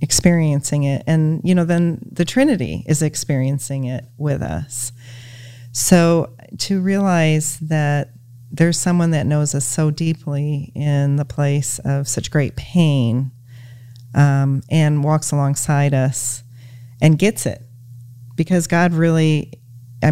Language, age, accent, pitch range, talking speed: English, 40-59, American, 125-155 Hz, 130 wpm